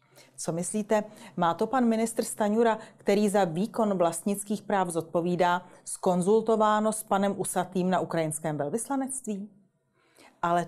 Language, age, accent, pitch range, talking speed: Czech, 30-49, native, 170-220 Hz, 120 wpm